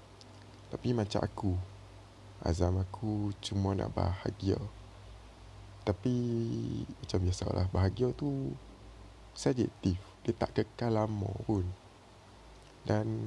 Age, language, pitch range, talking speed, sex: 20-39, Malay, 95-110 Hz, 90 wpm, male